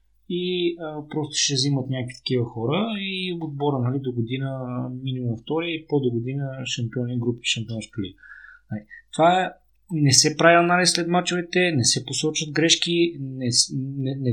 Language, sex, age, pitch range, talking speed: Bulgarian, male, 30-49, 125-160 Hz, 145 wpm